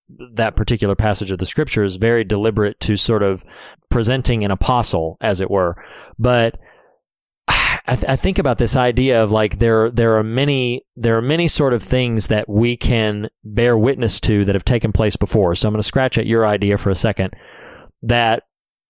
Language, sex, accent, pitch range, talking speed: English, male, American, 105-125 Hz, 190 wpm